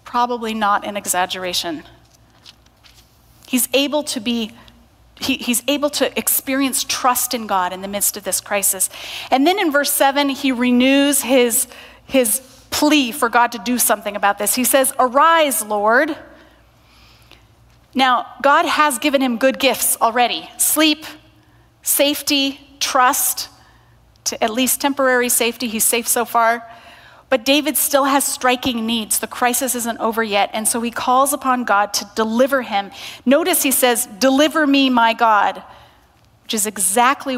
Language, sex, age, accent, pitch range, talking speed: English, female, 30-49, American, 230-280 Hz, 150 wpm